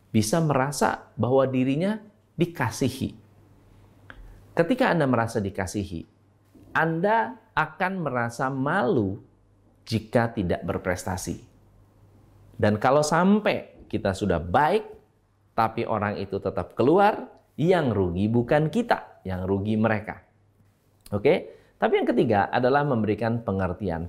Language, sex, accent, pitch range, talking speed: Indonesian, male, native, 100-165 Hz, 100 wpm